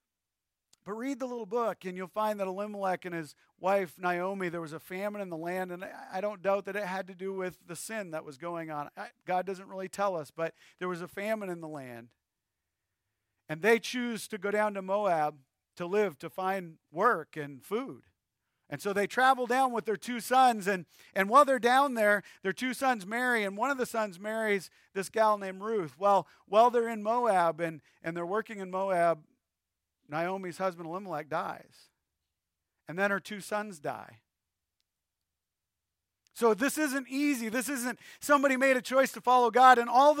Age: 50-69